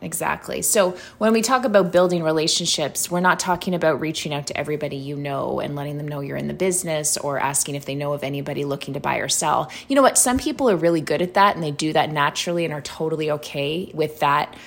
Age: 20-39